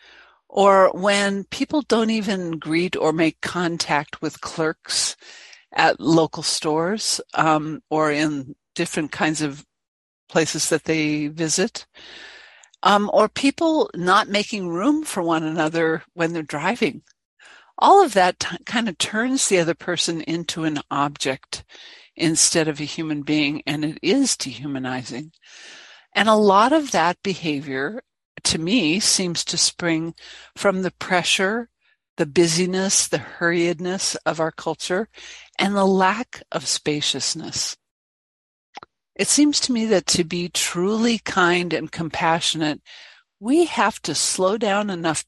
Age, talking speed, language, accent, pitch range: 60-79, 135 wpm, English, American, 155-205 Hz